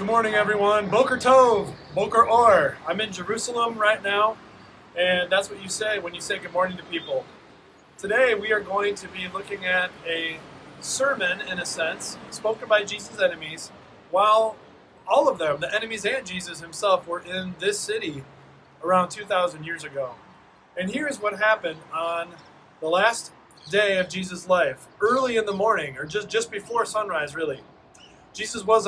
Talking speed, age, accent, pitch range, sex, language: 170 wpm, 30-49, American, 180-225 Hz, male, English